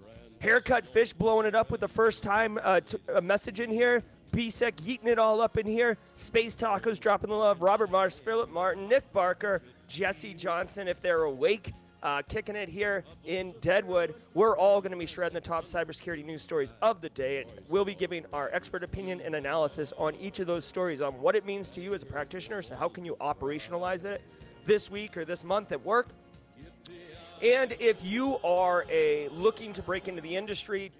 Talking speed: 200 wpm